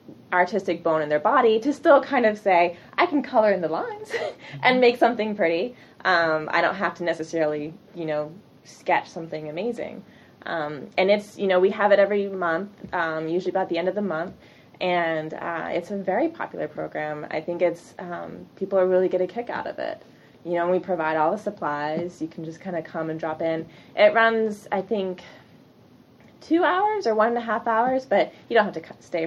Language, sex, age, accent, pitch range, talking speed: English, female, 20-39, American, 160-200 Hz, 210 wpm